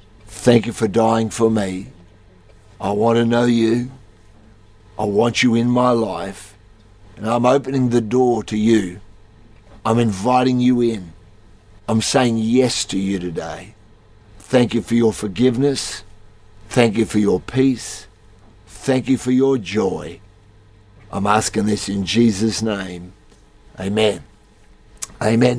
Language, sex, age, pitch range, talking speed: English, male, 50-69, 105-120 Hz, 135 wpm